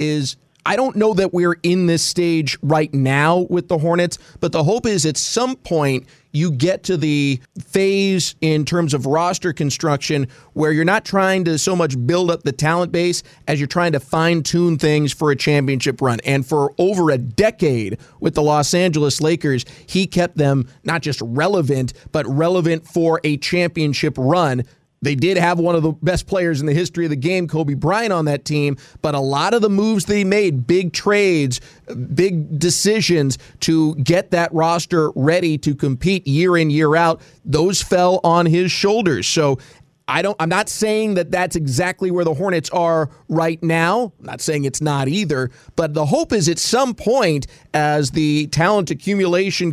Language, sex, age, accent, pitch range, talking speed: English, male, 30-49, American, 150-180 Hz, 185 wpm